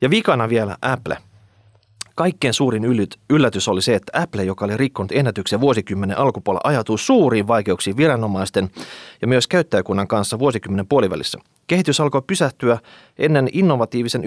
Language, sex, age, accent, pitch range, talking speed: Finnish, male, 30-49, native, 105-145 Hz, 135 wpm